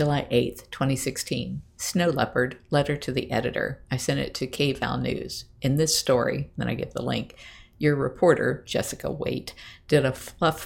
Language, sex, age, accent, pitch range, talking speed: English, female, 50-69, American, 130-155 Hz, 170 wpm